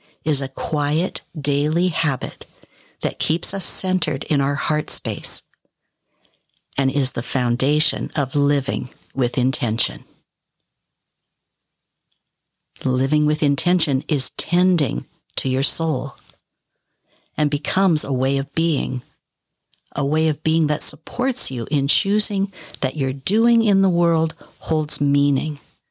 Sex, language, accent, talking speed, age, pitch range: female, English, American, 120 wpm, 60-79, 140-180 Hz